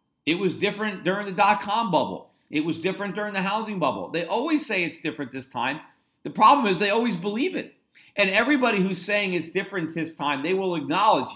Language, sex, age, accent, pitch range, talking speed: English, male, 40-59, American, 150-200 Hz, 205 wpm